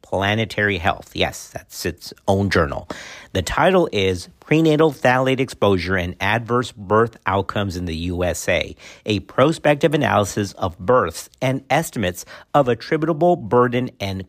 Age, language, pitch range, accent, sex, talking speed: 50-69, English, 100-130 Hz, American, male, 130 wpm